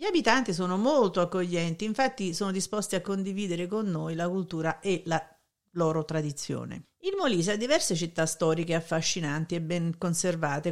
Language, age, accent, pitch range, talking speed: Italian, 50-69, native, 165-215 Hz, 155 wpm